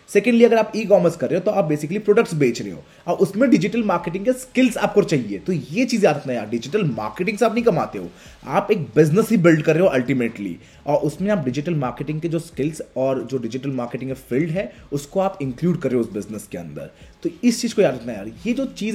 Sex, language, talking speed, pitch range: male, Hindi, 245 wpm, 150-200 Hz